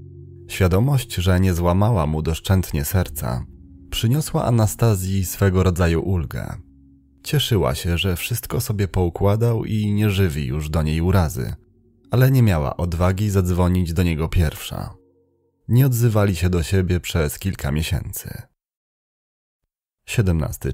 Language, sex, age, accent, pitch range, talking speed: Polish, male, 30-49, native, 85-105 Hz, 120 wpm